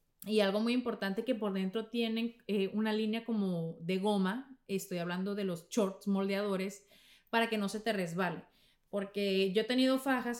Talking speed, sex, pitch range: 180 wpm, female, 190-240 Hz